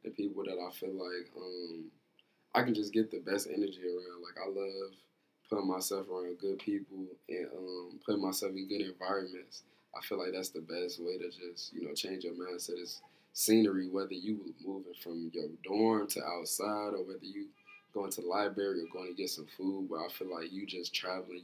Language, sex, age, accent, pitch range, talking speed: English, male, 20-39, American, 90-105 Hz, 205 wpm